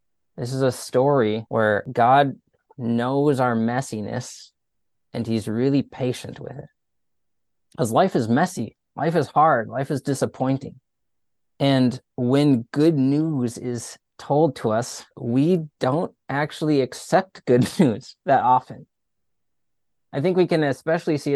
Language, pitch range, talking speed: English, 115-140 Hz, 130 wpm